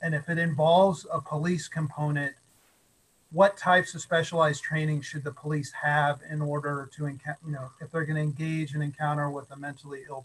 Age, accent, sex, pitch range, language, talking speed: 40-59, American, male, 145-165 Hz, English, 185 wpm